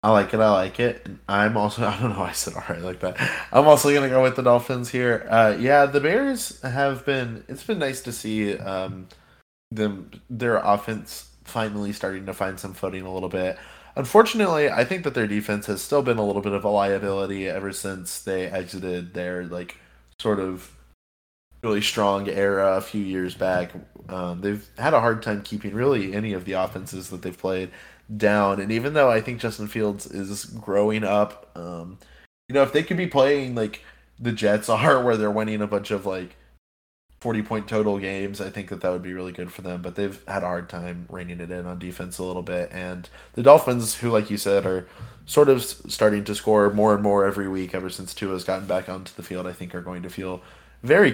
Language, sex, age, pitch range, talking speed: English, male, 20-39, 90-110 Hz, 220 wpm